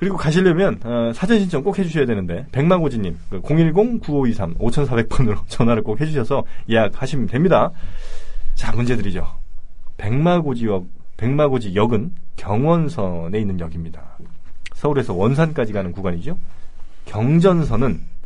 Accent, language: native, Korean